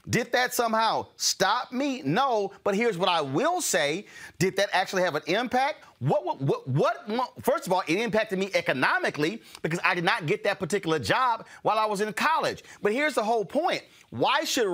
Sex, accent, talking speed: male, American, 205 wpm